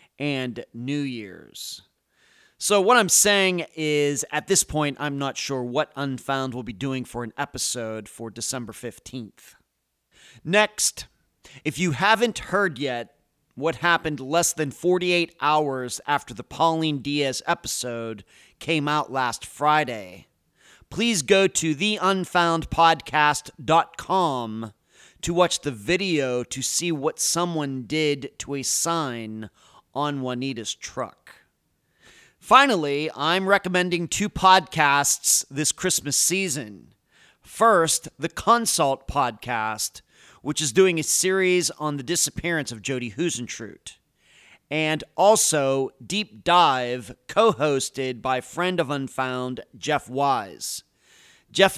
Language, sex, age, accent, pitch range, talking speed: English, male, 40-59, American, 130-175 Hz, 115 wpm